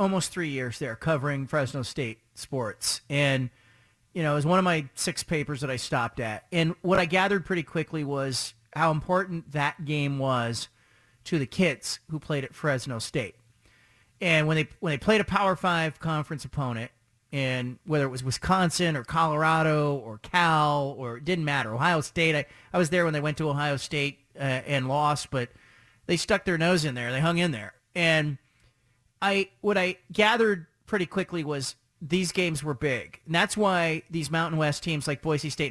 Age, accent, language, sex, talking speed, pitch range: 40-59, American, English, male, 190 wpm, 130-175 Hz